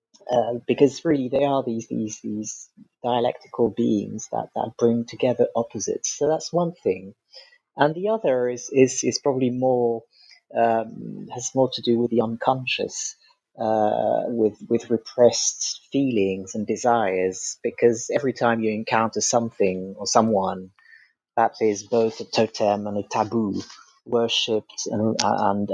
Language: English